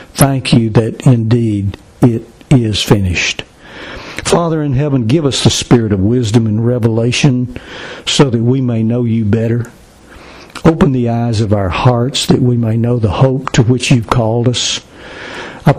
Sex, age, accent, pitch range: male, 60-79, American, 110-130 Hz